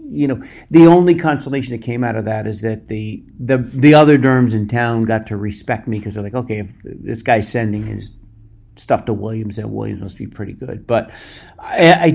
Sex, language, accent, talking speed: male, English, American, 215 wpm